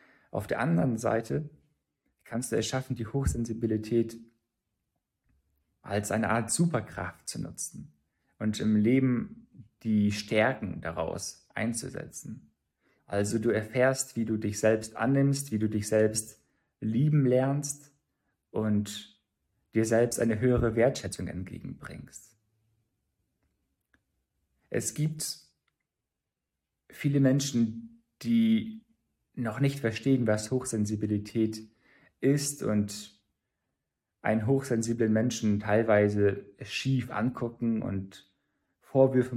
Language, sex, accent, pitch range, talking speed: German, male, German, 105-130 Hz, 100 wpm